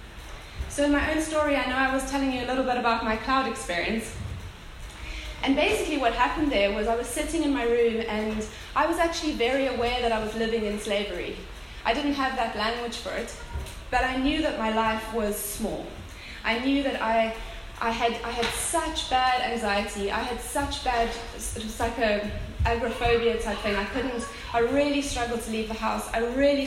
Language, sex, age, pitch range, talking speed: English, female, 20-39, 220-265 Hz, 205 wpm